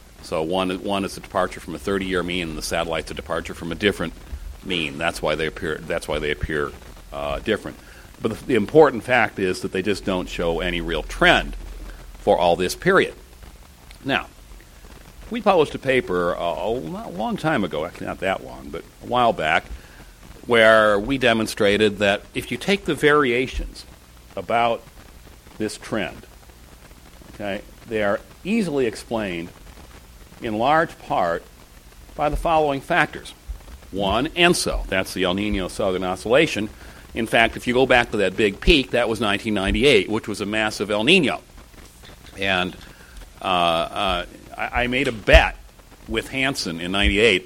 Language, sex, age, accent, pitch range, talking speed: English, male, 60-79, American, 75-110 Hz, 160 wpm